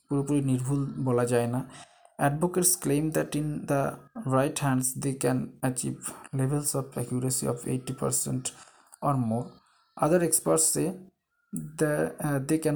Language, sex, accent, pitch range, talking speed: Bengali, male, native, 130-175 Hz, 115 wpm